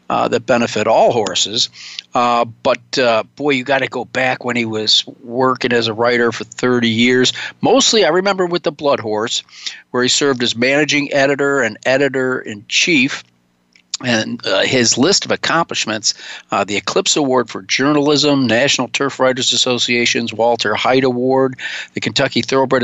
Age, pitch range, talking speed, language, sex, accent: 50-69, 120-150 Hz, 160 wpm, English, male, American